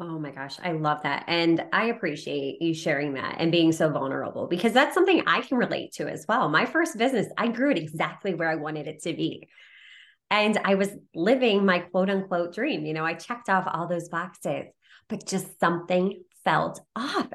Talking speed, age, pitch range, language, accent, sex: 205 wpm, 20-39, 170-230 Hz, English, American, female